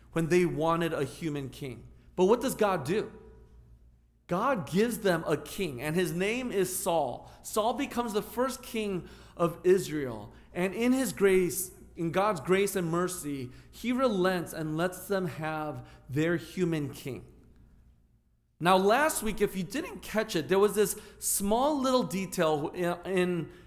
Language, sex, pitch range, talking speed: English, male, 155-215 Hz, 155 wpm